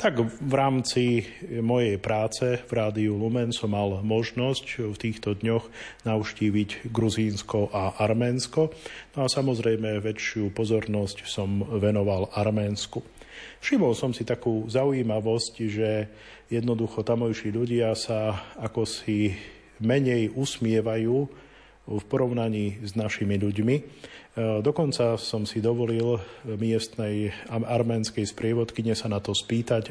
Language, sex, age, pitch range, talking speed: Slovak, male, 40-59, 105-115 Hz, 110 wpm